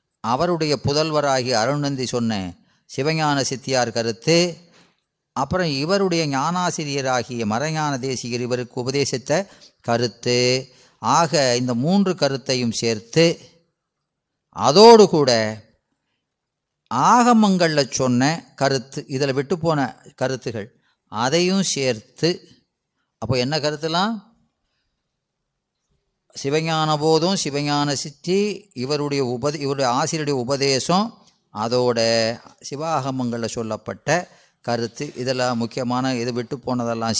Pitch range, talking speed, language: 125-155 Hz, 80 wpm, Tamil